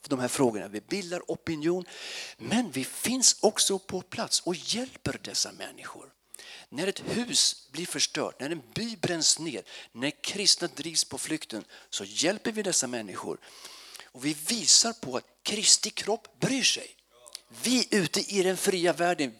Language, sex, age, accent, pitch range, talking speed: Swedish, male, 50-69, native, 140-210 Hz, 160 wpm